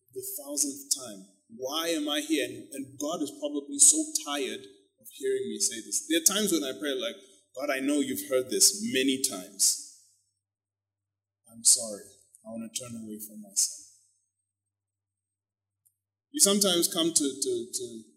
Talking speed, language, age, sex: 160 wpm, English, 20-39, male